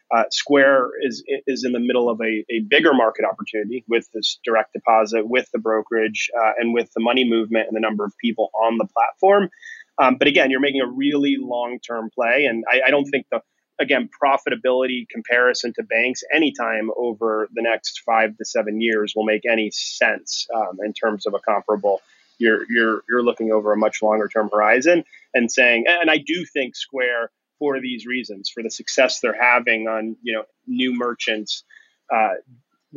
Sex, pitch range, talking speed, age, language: male, 110-130 Hz, 190 wpm, 30-49, English